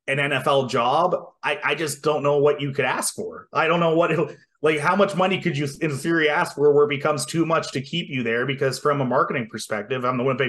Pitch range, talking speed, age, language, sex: 130-165 Hz, 250 wpm, 30-49, English, male